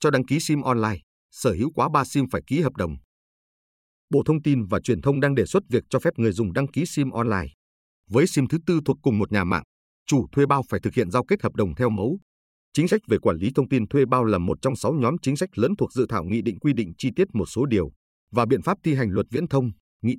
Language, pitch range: Vietnamese, 105-145 Hz